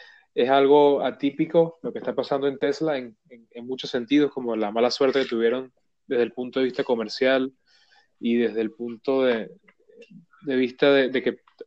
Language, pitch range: Spanish, 125-150 Hz